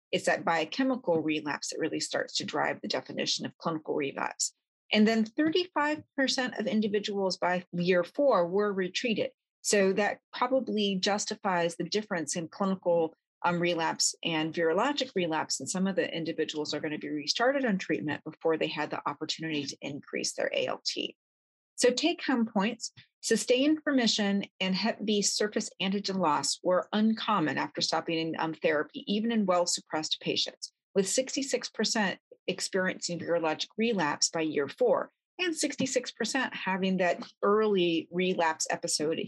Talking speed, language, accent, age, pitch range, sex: 145 wpm, English, American, 30-49, 170-235 Hz, female